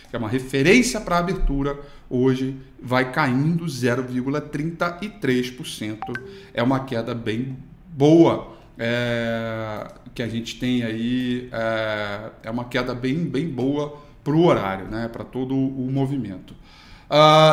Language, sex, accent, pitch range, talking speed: Portuguese, male, Brazilian, 115-140 Hz, 130 wpm